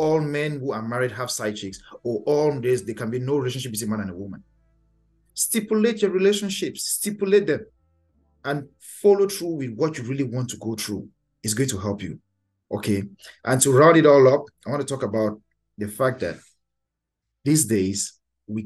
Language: English